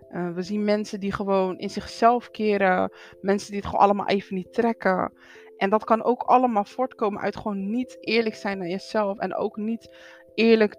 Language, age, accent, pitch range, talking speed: Dutch, 20-39, Dutch, 180-210 Hz, 190 wpm